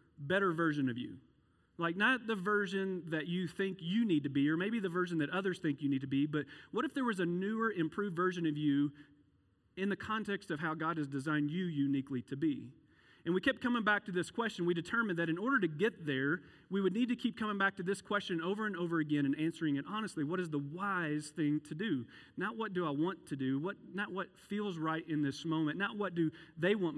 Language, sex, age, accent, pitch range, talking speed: English, male, 40-59, American, 145-185 Hz, 245 wpm